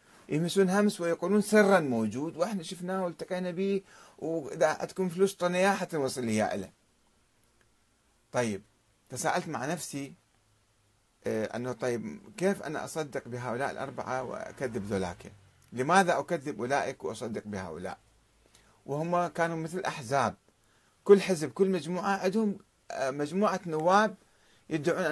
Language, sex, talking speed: Arabic, male, 115 wpm